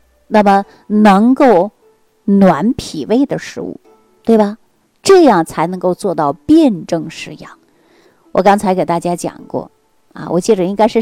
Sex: female